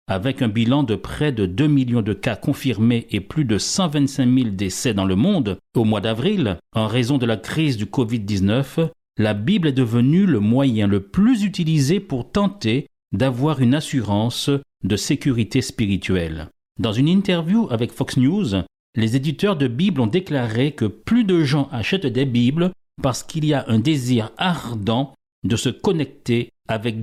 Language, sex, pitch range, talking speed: French, male, 115-155 Hz, 170 wpm